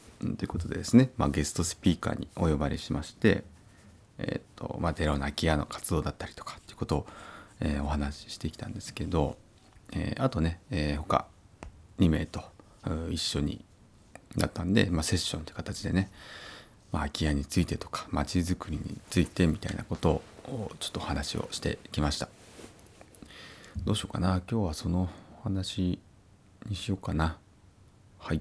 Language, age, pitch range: Japanese, 40-59, 80-100 Hz